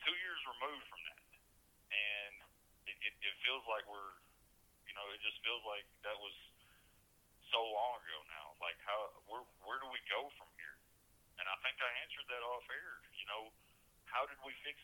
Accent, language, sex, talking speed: American, English, male, 190 wpm